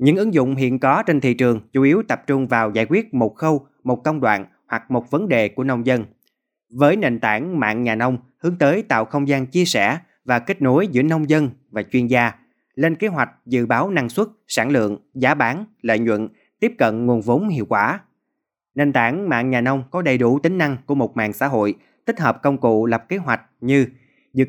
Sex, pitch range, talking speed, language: male, 120-155 Hz, 225 wpm, Vietnamese